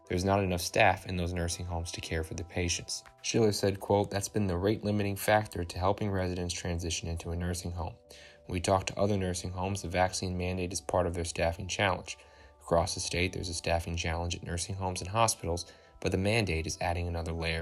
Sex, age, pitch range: male, 20-39, 85-100 Hz